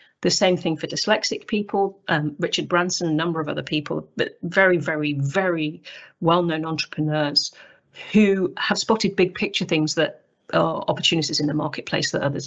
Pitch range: 155-195 Hz